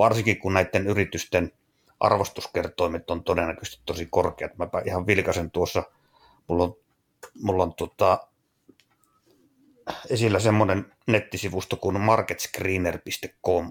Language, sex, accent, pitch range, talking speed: Finnish, male, native, 95-115 Hz, 100 wpm